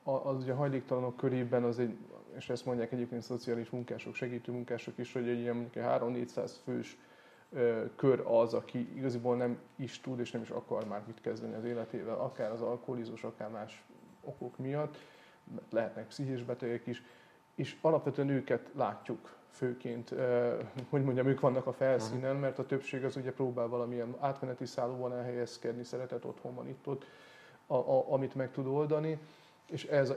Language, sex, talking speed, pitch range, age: Hungarian, male, 165 wpm, 120-135 Hz, 30-49